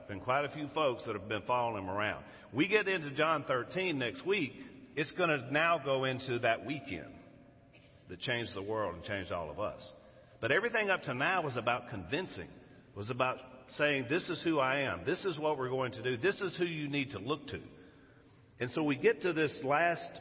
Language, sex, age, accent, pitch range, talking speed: English, male, 50-69, American, 120-175 Hz, 215 wpm